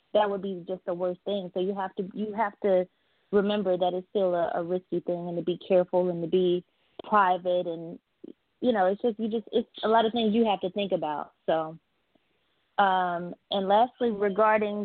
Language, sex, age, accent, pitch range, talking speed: English, female, 20-39, American, 180-210 Hz, 210 wpm